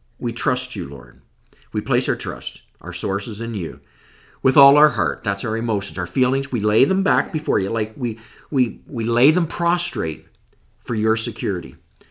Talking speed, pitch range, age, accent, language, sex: 185 wpm, 110-160 Hz, 50-69, American, English, male